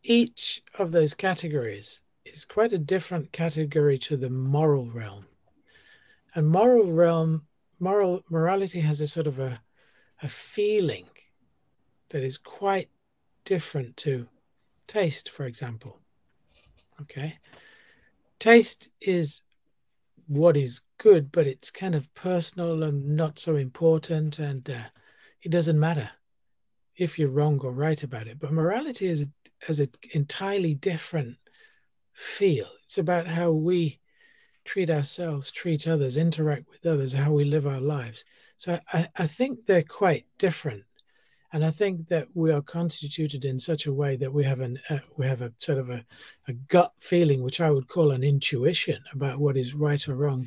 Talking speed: 150 wpm